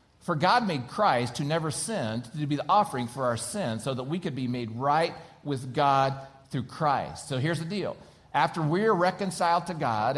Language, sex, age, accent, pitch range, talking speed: English, male, 50-69, American, 125-160 Hz, 200 wpm